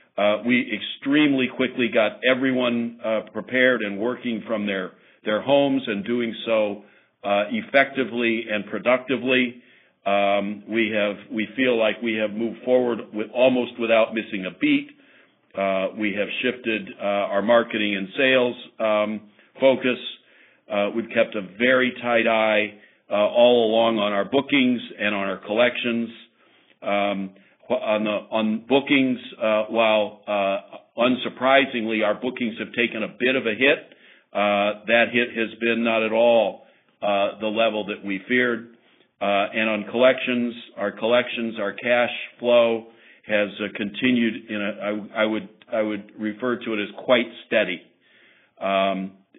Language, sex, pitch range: English, male, 105-120 Hz